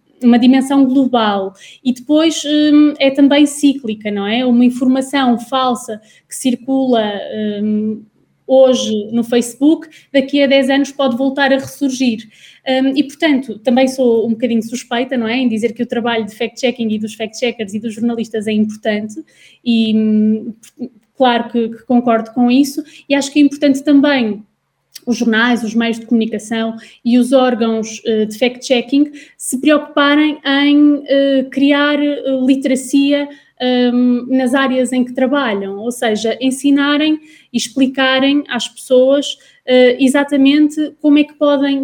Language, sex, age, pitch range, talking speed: Portuguese, female, 20-39, 230-275 Hz, 145 wpm